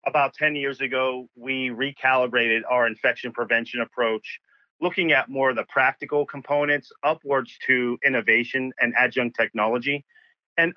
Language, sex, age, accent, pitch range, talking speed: English, male, 40-59, American, 120-145 Hz, 135 wpm